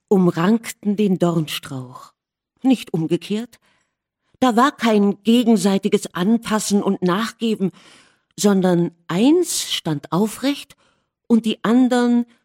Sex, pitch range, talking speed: female, 175-230 Hz, 90 wpm